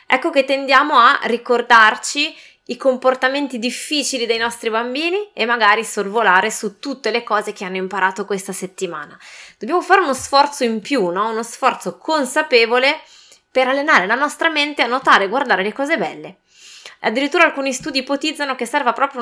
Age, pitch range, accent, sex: 20-39, 205-270 Hz, native, female